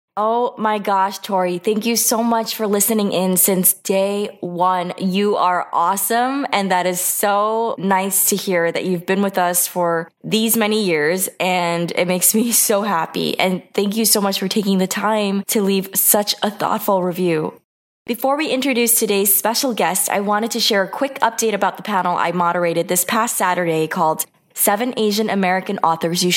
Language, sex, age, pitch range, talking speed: English, female, 20-39, 180-220 Hz, 185 wpm